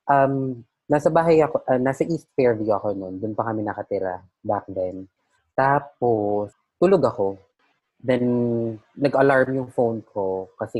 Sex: female